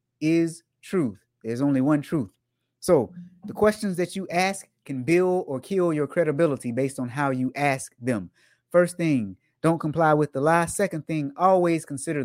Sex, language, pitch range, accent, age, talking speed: male, English, 125-170 Hz, American, 30-49, 170 wpm